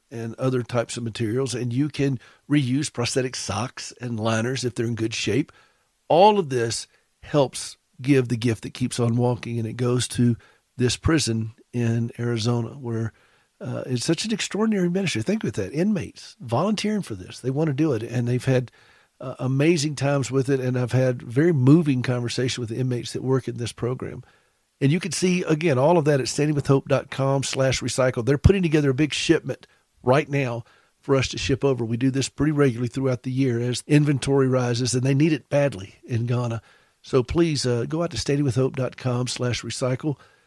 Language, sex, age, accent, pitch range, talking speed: English, male, 50-69, American, 120-145 Hz, 190 wpm